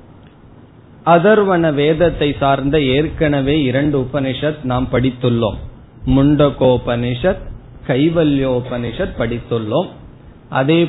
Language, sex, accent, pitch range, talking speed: Tamil, male, native, 120-160 Hz, 65 wpm